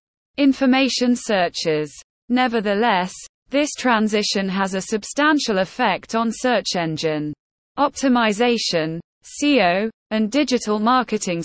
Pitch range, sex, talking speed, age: 180-245 Hz, female, 90 wpm, 20-39